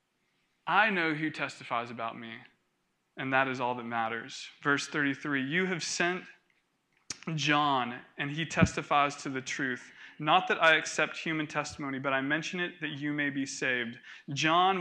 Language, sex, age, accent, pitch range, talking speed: English, male, 20-39, American, 140-170 Hz, 160 wpm